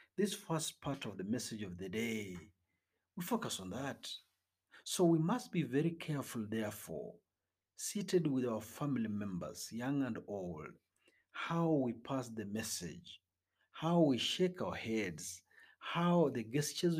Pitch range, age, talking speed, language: 100-150 Hz, 50-69, 145 wpm, Swahili